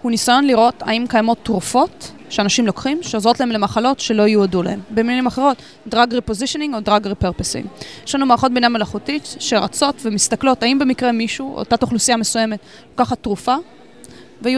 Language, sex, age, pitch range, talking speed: Hebrew, female, 20-39, 215-265 Hz, 150 wpm